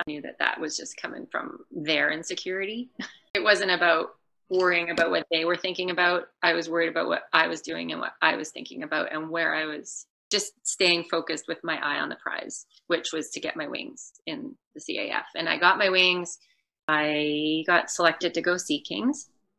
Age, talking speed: 30-49, 210 wpm